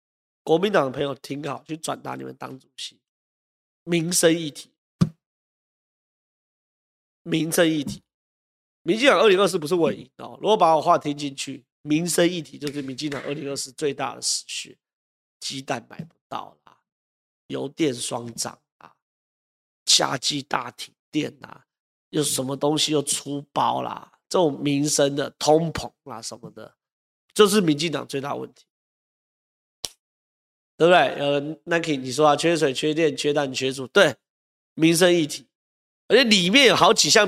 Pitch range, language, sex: 140-175 Hz, Chinese, male